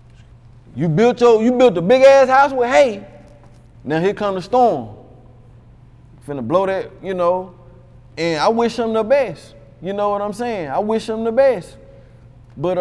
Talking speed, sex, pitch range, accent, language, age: 180 wpm, male, 125-210 Hz, American, English, 30-49